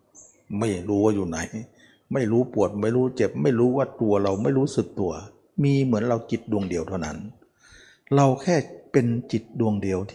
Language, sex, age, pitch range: Thai, male, 60-79, 105-135 Hz